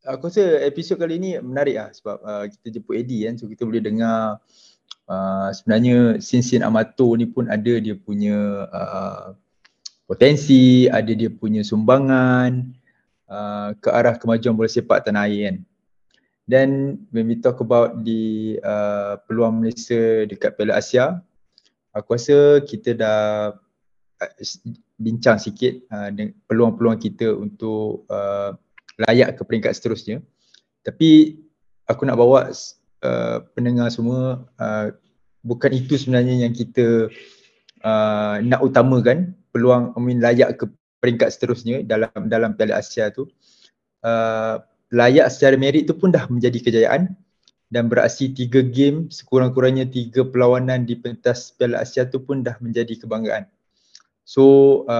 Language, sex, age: Malay, male, 20-39